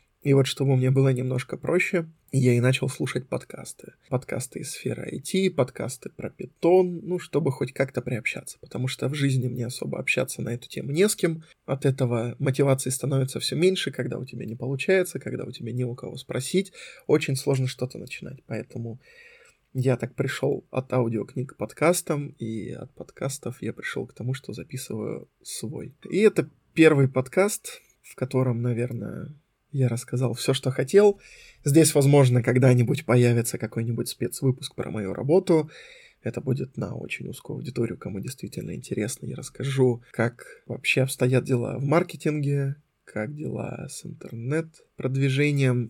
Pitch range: 125-155 Hz